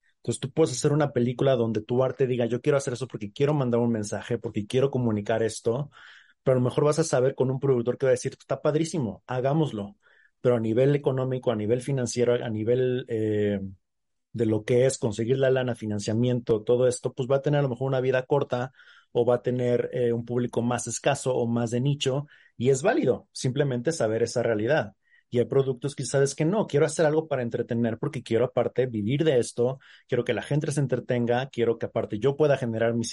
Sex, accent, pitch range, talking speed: male, Mexican, 120-150 Hz, 220 wpm